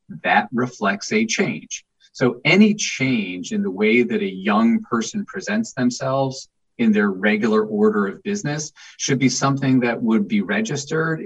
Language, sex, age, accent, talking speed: English, male, 40-59, American, 155 wpm